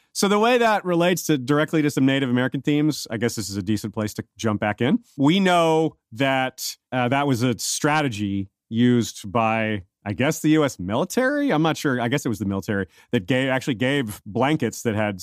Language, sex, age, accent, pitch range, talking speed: English, male, 30-49, American, 105-140 Hz, 215 wpm